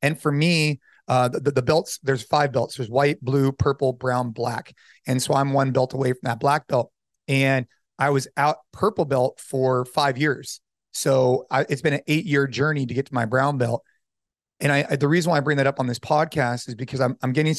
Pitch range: 125-150 Hz